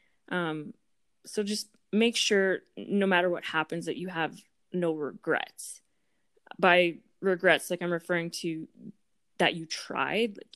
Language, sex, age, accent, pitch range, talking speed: English, female, 20-39, American, 165-200 Hz, 135 wpm